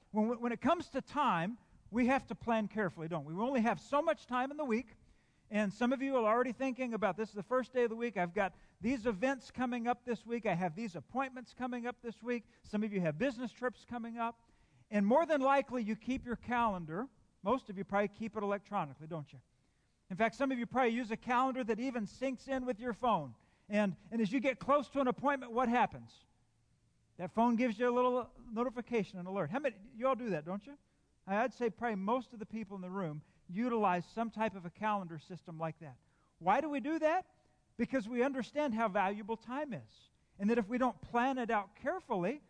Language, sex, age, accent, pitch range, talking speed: English, male, 50-69, American, 200-250 Hz, 230 wpm